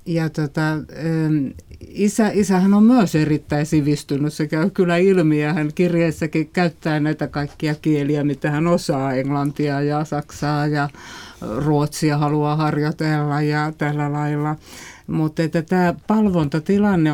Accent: native